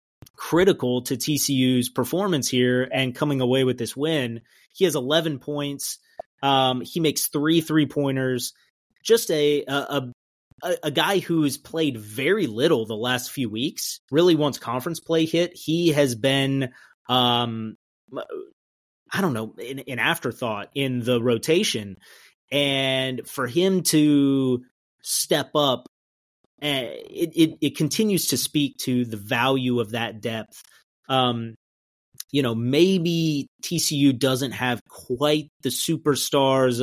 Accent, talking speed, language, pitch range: American, 135 wpm, English, 125-150 Hz